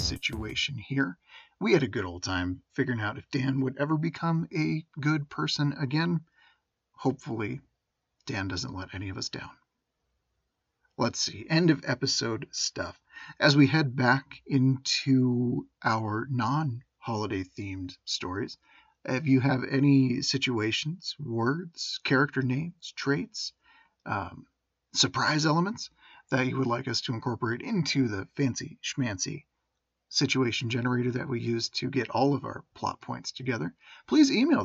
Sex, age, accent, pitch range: male, 40-59, American, 115-145 Hz